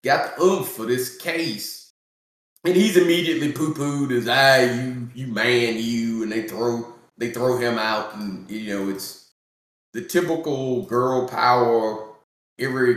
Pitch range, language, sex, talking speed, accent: 110-165 Hz, English, male, 150 wpm, American